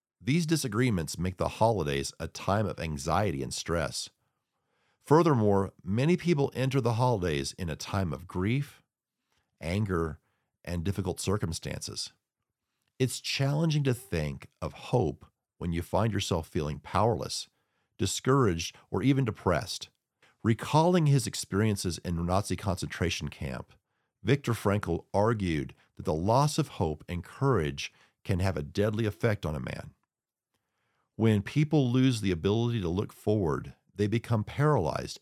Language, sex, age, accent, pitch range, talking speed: English, male, 50-69, American, 85-125 Hz, 135 wpm